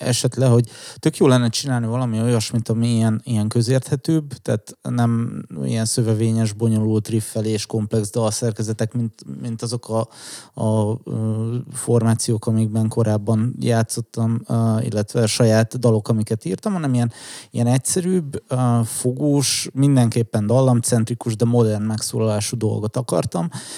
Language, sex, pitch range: Hungarian, male, 110-125 Hz